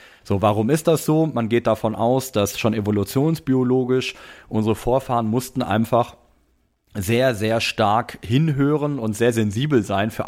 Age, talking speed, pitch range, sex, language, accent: 30-49, 145 wpm, 105-125 Hz, male, German, German